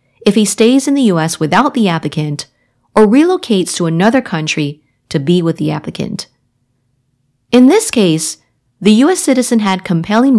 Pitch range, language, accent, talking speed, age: 150-220 Hz, English, American, 155 wpm, 30-49